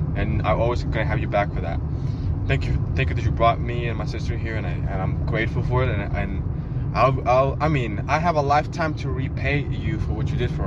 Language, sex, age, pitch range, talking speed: English, male, 20-39, 100-130 Hz, 265 wpm